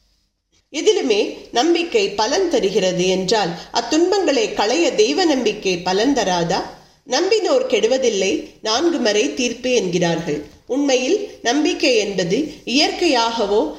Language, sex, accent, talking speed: Tamil, female, native, 90 wpm